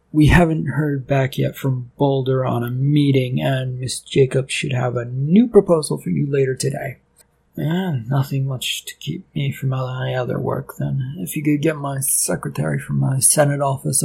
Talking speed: 185 wpm